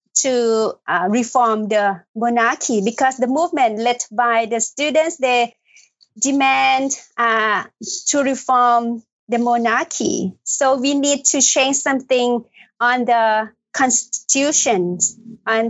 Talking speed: 110 wpm